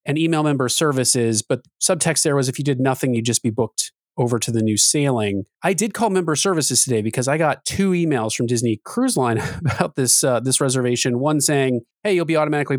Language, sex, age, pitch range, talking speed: English, male, 30-49, 125-155 Hz, 220 wpm